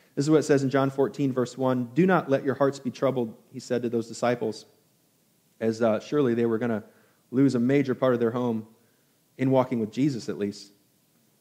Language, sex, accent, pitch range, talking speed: English, male, American, 120-145 Hz, 220 wpm